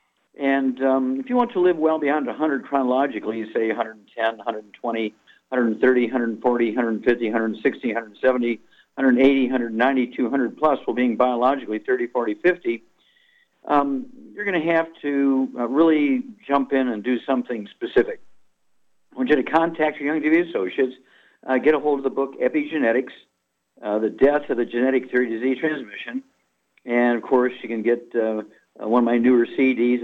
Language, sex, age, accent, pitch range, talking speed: English, male, 50-69, American, 120-160 Hz, 165 wpm